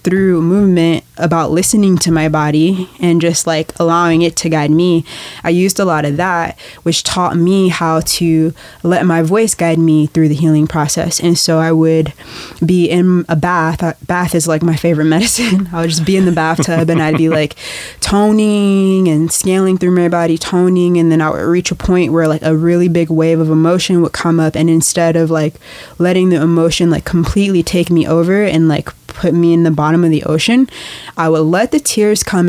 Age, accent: 20-39, American